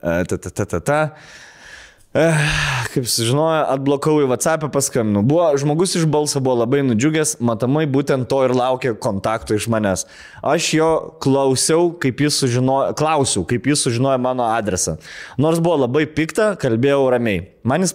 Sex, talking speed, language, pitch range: male, 140 wpm, English, 115-140 Hz